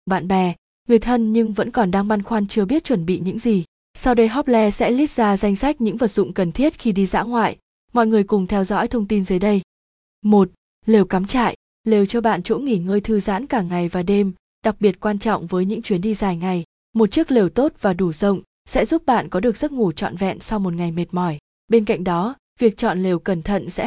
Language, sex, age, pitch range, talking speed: Vietnamese, female, 20-39, 185-230 Hz, 245 wpm